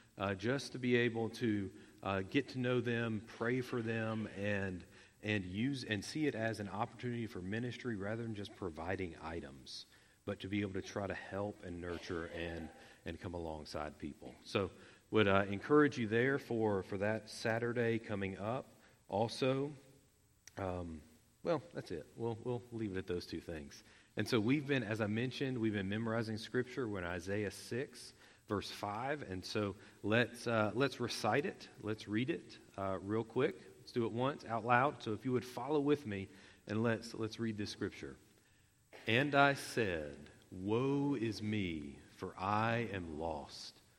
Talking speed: 175 wpm